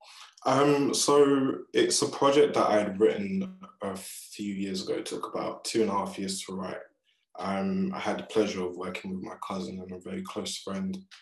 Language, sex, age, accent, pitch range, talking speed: English, male, 20-39, British, 95-110 Hz, 205 wpm